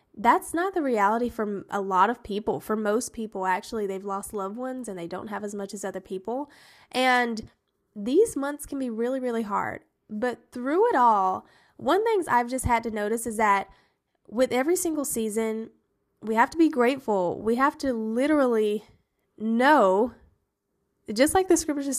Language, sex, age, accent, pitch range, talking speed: English, female, 10-29, American, 205-270 Hz, 175 wpm